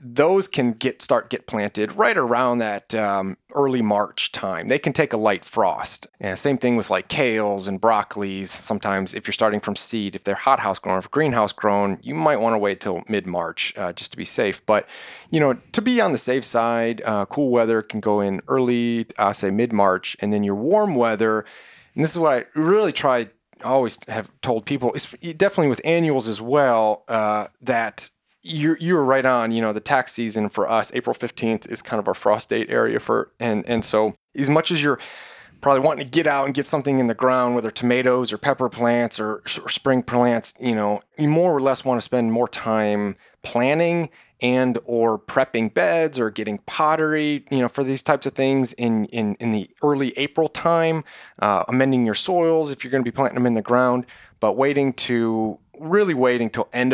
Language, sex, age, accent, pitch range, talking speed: English, male, 30-49, American, 110-140 Hz, 210 wpm